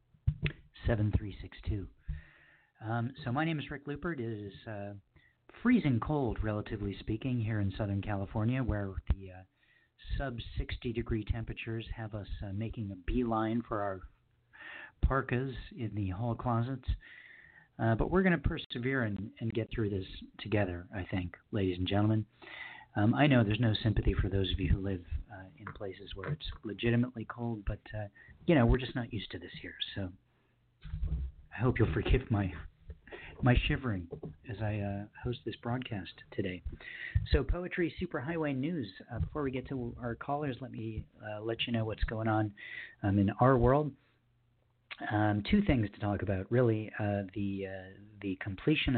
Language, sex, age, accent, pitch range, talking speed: English, male, 50-69, American, 100-125 Hz, 165 wpm